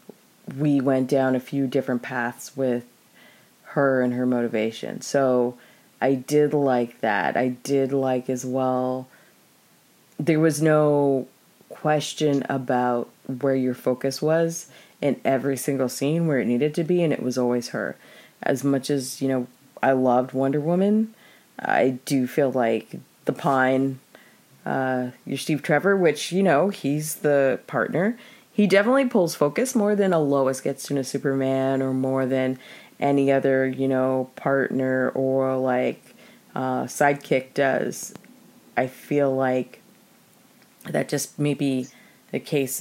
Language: English